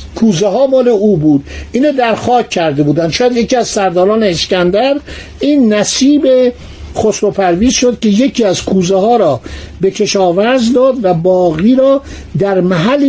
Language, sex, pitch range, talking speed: Persian, male, 185-245 Hz, 150 wpm